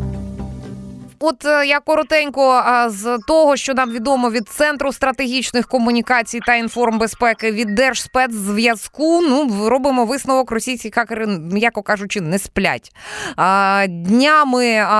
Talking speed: 110 wpm